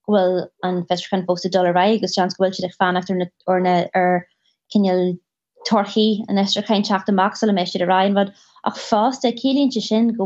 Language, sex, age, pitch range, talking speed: English, female, 20-39, 190-225 Hz, 150 wpm